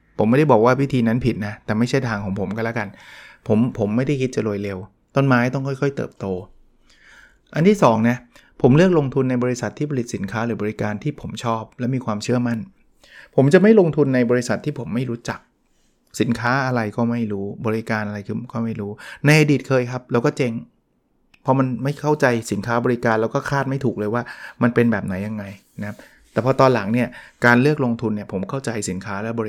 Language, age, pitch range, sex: Thai, 20-39, 110-140 Hz, male